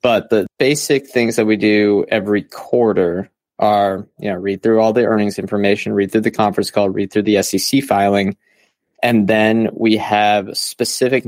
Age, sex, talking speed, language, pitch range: 20-39, male, 175 wpm, English, 105-125 Hz